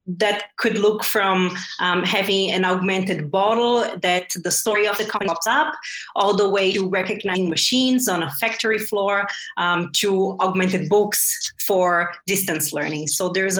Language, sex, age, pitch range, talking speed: English, female, 30-49, 175-210 Hz, 160 wpm